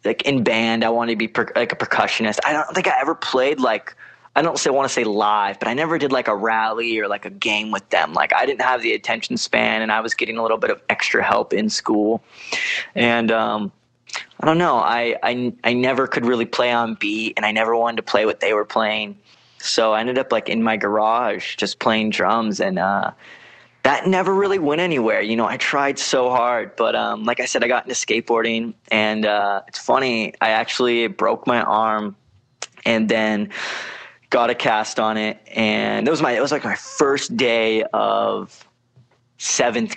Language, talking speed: English, 215 wpm